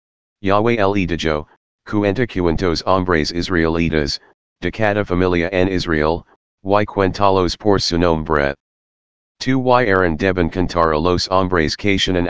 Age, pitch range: 40-59, 85-100 Hz